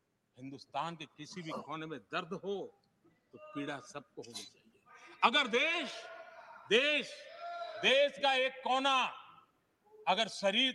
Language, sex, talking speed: Hindi, male, 125 wpm